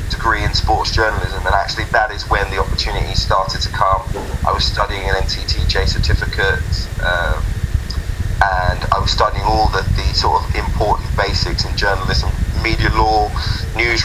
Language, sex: English, male